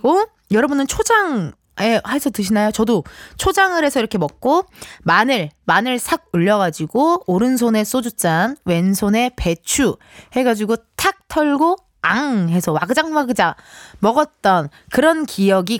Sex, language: female, Korean